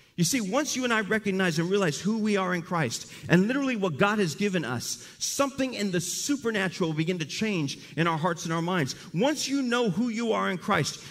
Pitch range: 170-225 Hz